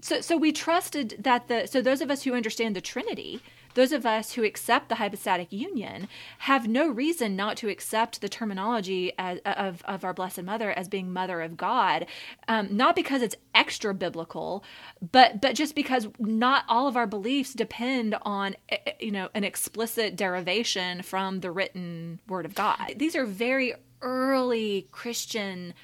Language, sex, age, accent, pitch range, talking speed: English, female, 30-49, American, 190-245 Hz, 170 wpm